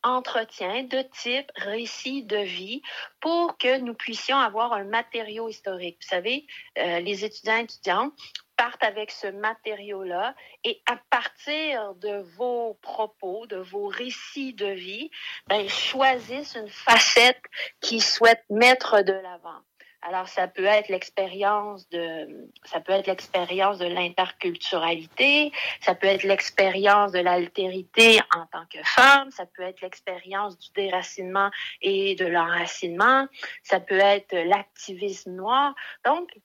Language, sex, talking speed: French, female, 135 wpm